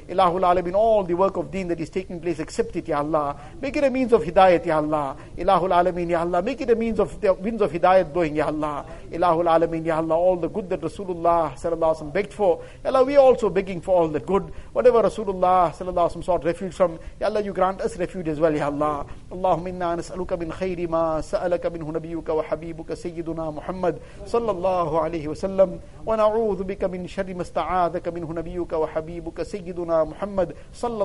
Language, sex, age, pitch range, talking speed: English, male, 50-69, 165-190 Hz, 215 wpm